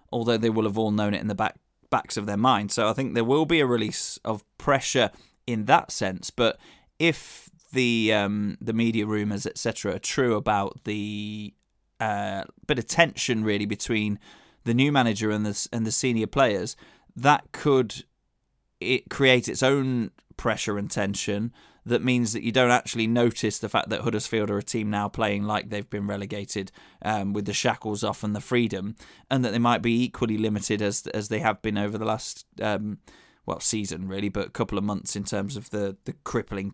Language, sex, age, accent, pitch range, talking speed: English, male, 20-39, British, 105-120 Hz, 200 wpm